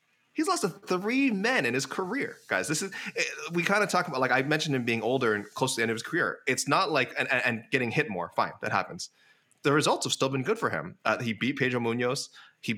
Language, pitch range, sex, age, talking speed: English, 110-140 Hz, male, 20-39, 265 wpm